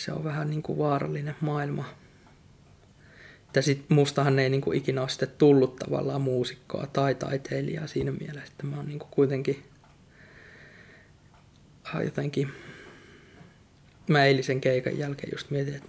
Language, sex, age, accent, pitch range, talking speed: Finnish, male, 20-39, native, 135-150 Hz, 125 wpm